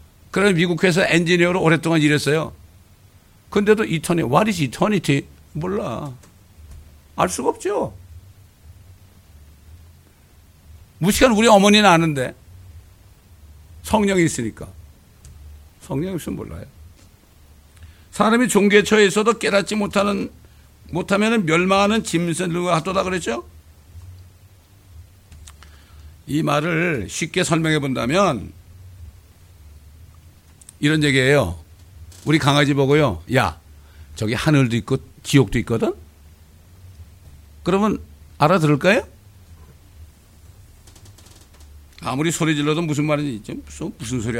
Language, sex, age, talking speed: English, male, 60-79, 80 wpm